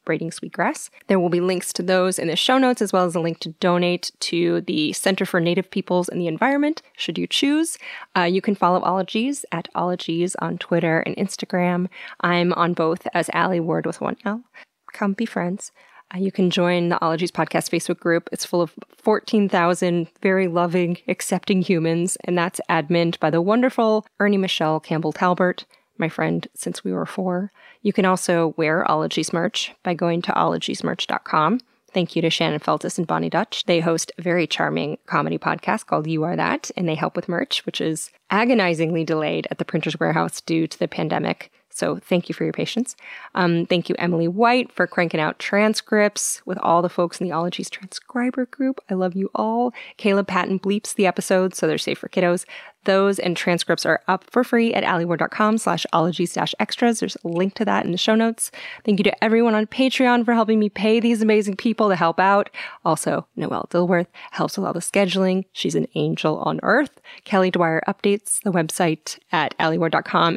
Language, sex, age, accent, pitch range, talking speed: English, female, 20-39, American, 170-210 Hz, 195 wpm